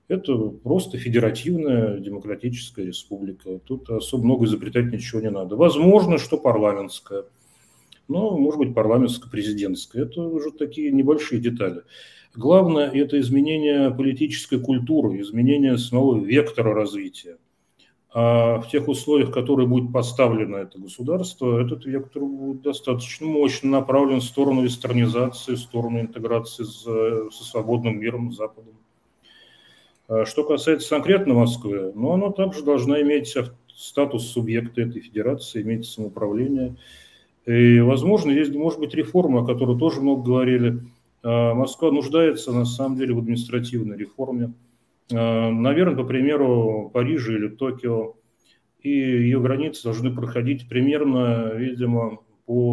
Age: 40-59